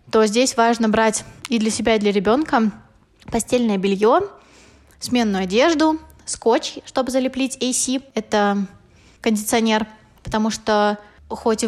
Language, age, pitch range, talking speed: Russian, 20-39, 210-250 Hz, 120 wpm